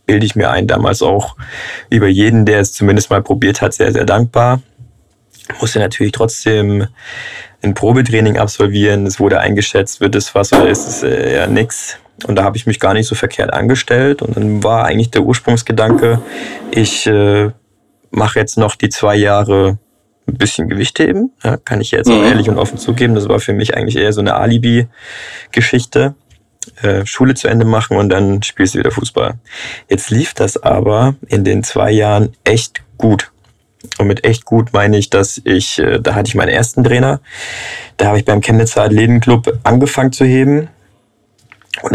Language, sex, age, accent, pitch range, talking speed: German, male, 20-39, German, 105-120 Hz, 180 wpm